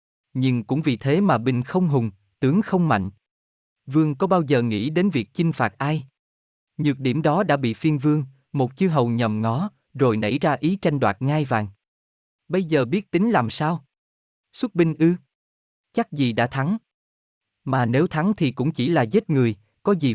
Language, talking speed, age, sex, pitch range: Vietnamese, 195 wpm, 20-39, male, 115-160 Hz